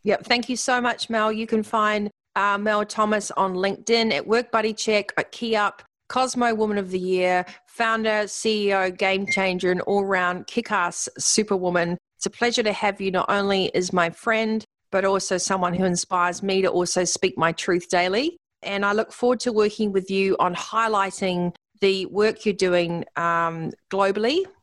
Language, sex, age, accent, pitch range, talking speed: English, female, 40-59, Australian, 180-215 Hz, 175 wpm